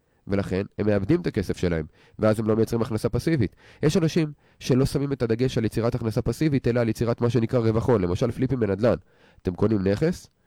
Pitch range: 95-135 Hz